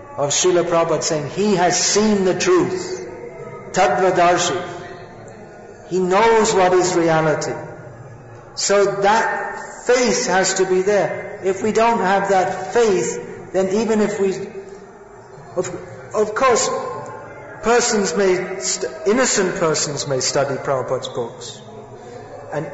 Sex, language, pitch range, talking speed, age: male, English, 175-205 Hz, 120 wpm, 50-69